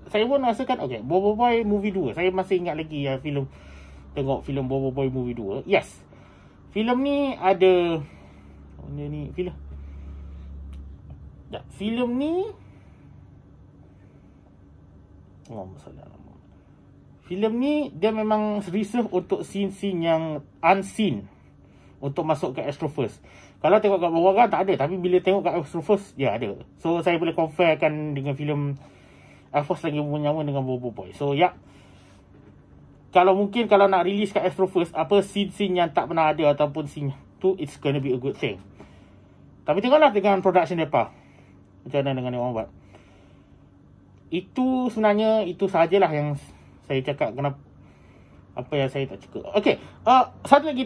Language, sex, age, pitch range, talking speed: Malay, male, 30-49, 140-205 Hz, 150 wpm